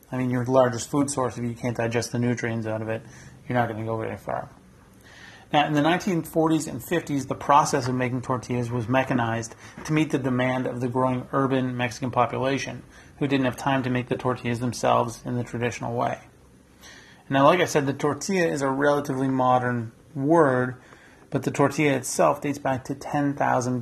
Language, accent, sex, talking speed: English, American, male, 195 wpm